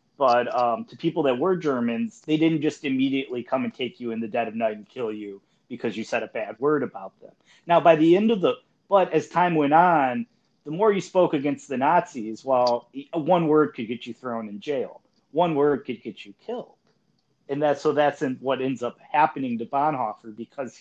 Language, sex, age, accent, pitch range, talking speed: English, male, 30-49, American, 120-160 Hz, 215 wpm